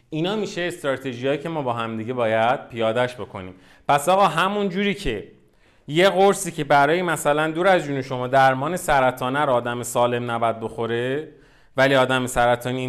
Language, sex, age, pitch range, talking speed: Persian, male, 30-49, 120-155 Hz, 150 wpm